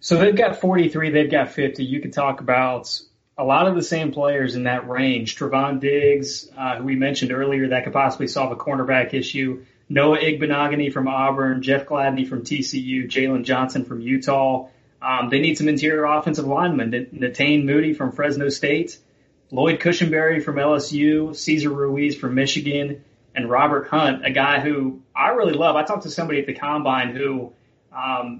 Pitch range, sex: 130-150 Hz, male